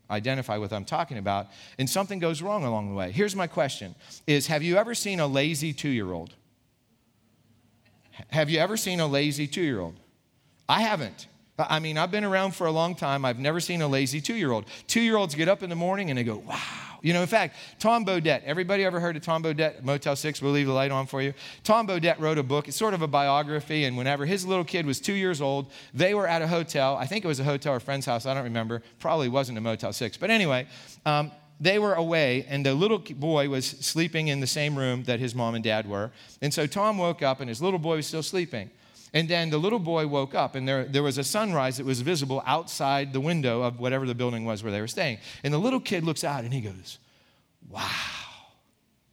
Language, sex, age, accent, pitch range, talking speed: English, male, 40-59, American, 130-185 Hz, 235 wpm